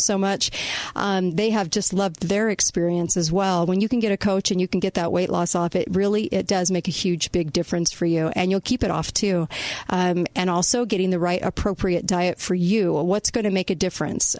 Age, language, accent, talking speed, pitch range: 40-59, English, American, 240 wpm, 175-210 Hz